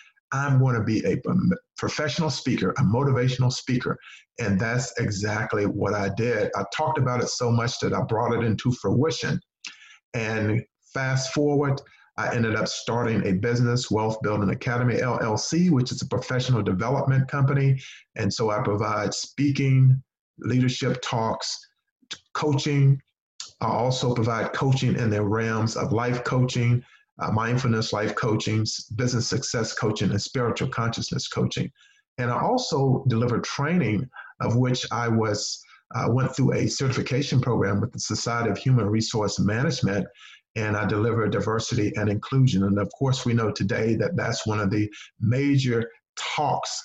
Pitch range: 110-135 Hz